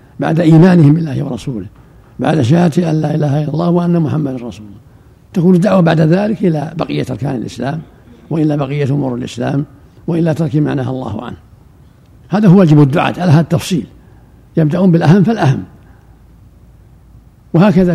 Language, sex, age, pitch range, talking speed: Arabic, male, 60-79, 130-170 Hz, 140 wpm